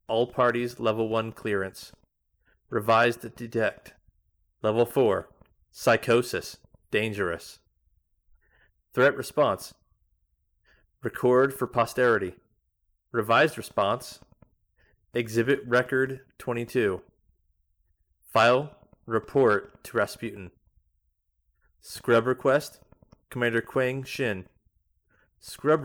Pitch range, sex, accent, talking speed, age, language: 90-125 Hz, male, American, 70 wpm, 30-49, English